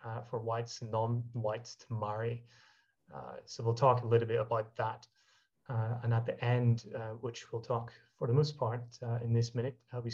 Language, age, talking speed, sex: English, 30-49, 205 wpm, male